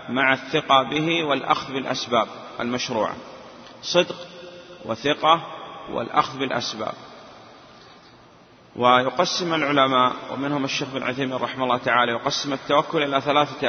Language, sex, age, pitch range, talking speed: Arabic, male, 30-49, 130-160 Hz, 95 wpm